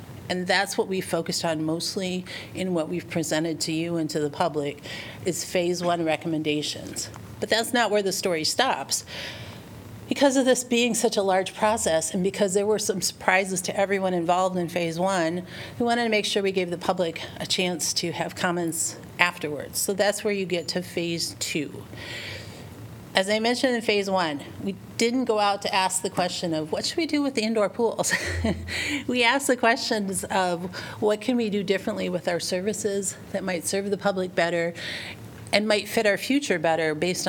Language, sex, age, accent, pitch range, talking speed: English, female, 40-59, American, 160-205 Hz, 195 wpm